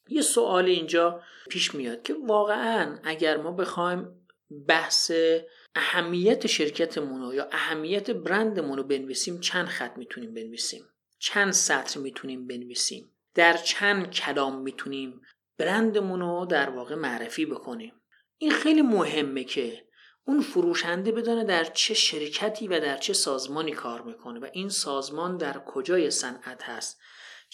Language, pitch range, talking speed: Persian, 150-220 Hz, 130 wpm